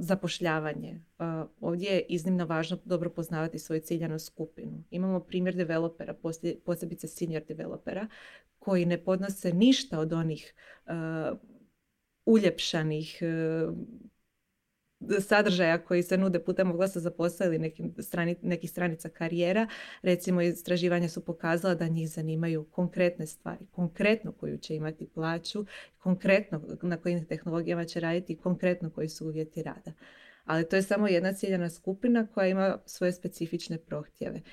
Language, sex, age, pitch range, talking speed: Croatian, female, 20-39, 165-190 Hz, 135 wpm